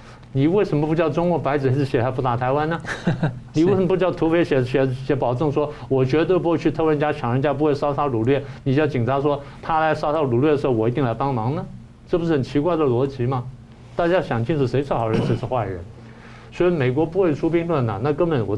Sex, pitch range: male, 120-155 Hz